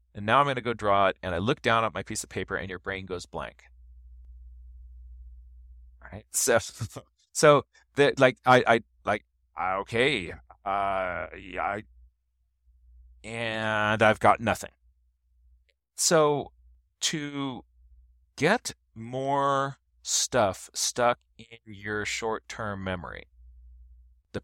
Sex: male